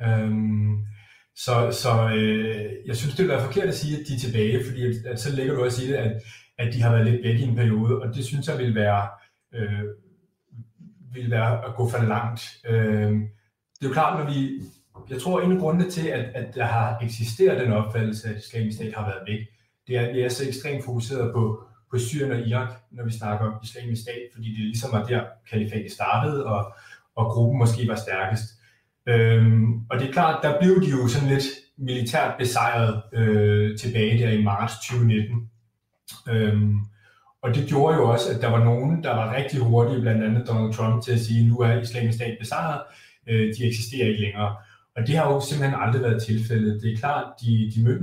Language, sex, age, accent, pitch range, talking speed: Danish, male, 30-49, native, 110-130 Hz, 210 wpm